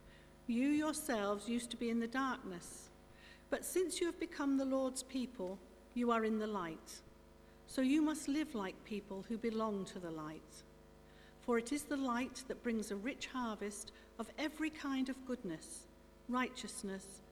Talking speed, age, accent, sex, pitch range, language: 165 wpm, 50-69, British, female, 175-270 Hz, English